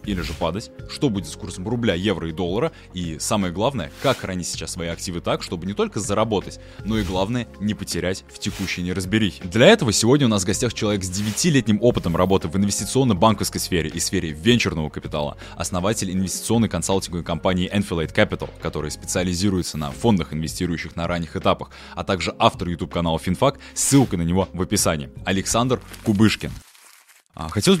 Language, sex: Russian, male